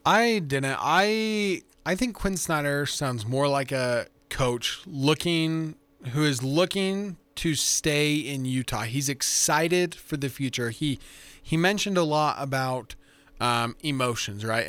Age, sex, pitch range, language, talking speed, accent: 20-39, male, 125-150 Hz, English, 140 wpm, American